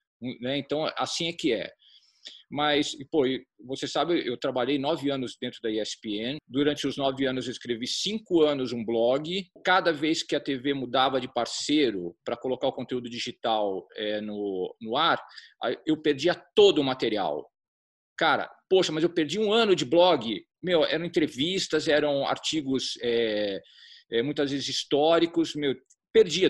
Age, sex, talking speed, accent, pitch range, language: 50-69, male, 155 wpm, Brazilian, 130-180 Hz, Portuguese